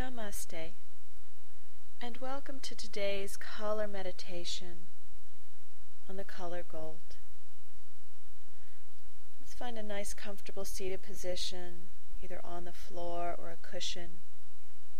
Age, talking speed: 40-59, 100 wpm